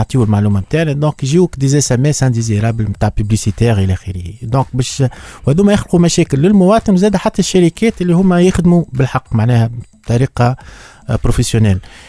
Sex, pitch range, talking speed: male, 120-160 Hz, 160 wpm